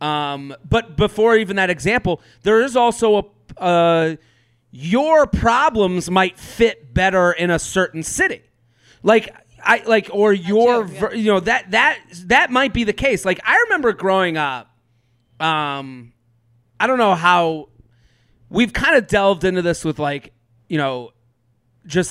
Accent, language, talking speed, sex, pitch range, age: American, English, 150 wpm, male, 145-200 Hz, 30-49